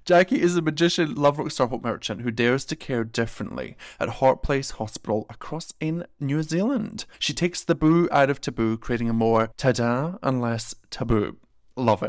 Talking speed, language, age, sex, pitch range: 180 wpm, English, 30-49, male, 115-150 Hz